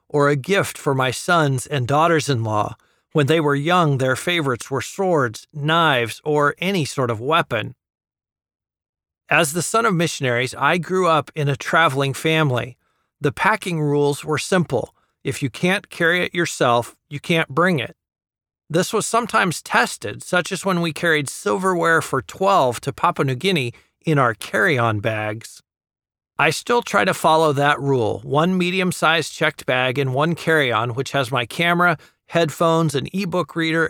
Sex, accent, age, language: male, American, 40-59, English